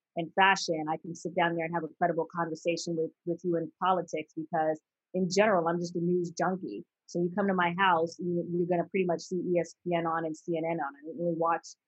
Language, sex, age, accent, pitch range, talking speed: English, female, 30-49, American, 170-185 Hz, 235 wpm